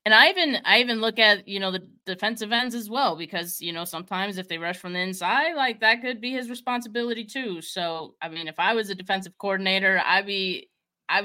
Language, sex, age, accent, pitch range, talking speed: English, female, 20-39, American, 170-220 Hz, 220 wpm